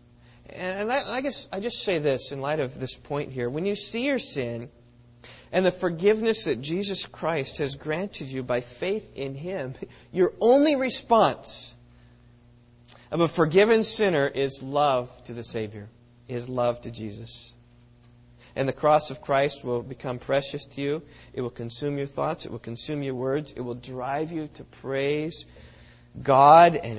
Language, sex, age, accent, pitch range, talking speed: English, male, 40-59, American, 120-165 Hz, 165 wpm